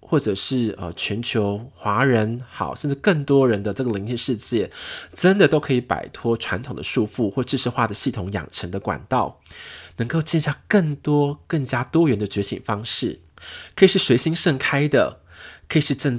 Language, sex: Chinese, male